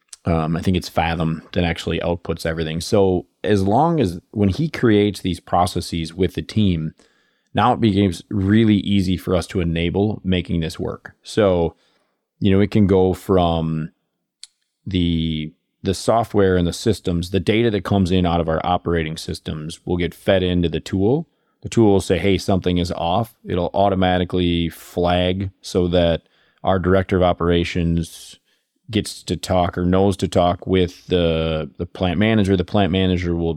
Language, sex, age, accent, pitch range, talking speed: English, male, 30-49, American, 85-100 Hz, 170 wpm